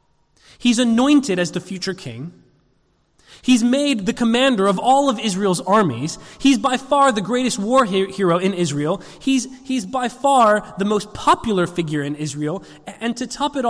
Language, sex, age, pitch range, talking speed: English, male, 20-39, 155-225 Hz, 165 wpm